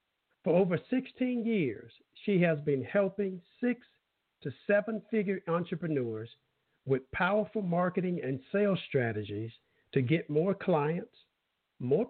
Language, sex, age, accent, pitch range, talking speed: English, male, 50-69, American, 140-210 Hz, 115 wpm